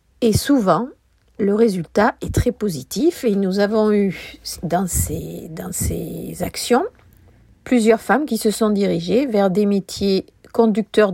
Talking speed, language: 140 wpm, French